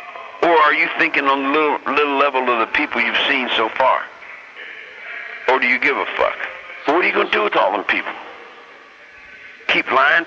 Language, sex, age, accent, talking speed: Italian, male, 60-79, American, 205 wpm